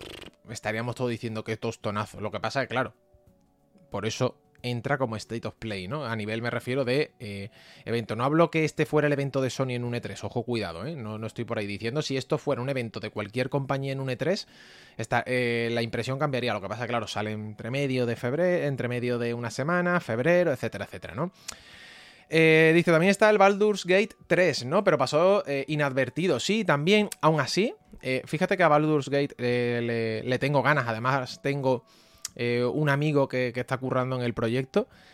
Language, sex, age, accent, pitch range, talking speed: English, male, 20-39, Spanish, 115-160 Hz, 205 wpm